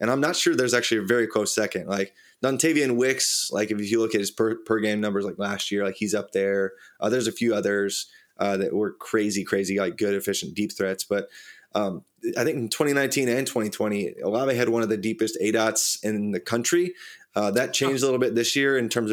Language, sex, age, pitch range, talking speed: English, male, 20-39, 100-120 Hz, 225 wpm